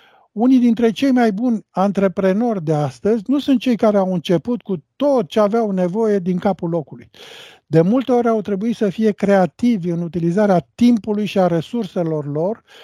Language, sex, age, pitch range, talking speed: Romanian, male, 50-69, 165-225 Hz, 175 wpm